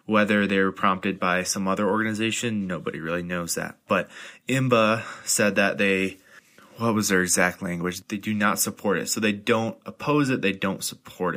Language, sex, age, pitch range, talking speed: English, male, 20-39, 90-105 Hz, 185 wpm